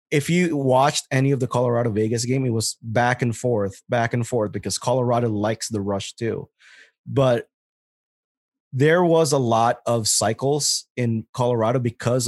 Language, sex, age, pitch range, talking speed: English, male, 20-39, 110-140 Hz, 160 wpm